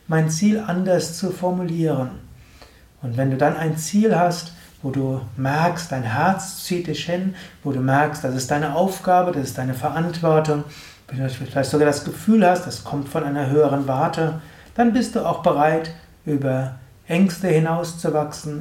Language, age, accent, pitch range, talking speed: German, 60-79, German, 135-175 Hz, 170 wpm